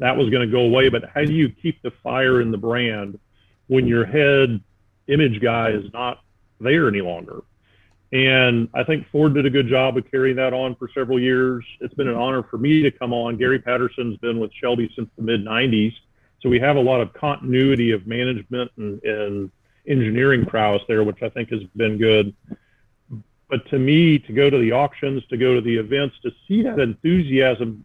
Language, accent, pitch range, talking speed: English, American, 115-140 Hz, 205 wpm